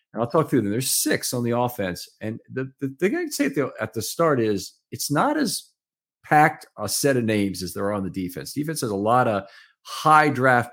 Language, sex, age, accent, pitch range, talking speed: English, male, 50-69, American, 95-125 Hz, 235 wpm